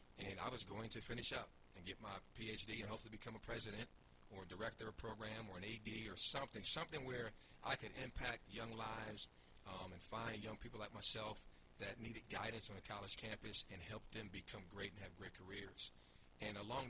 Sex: male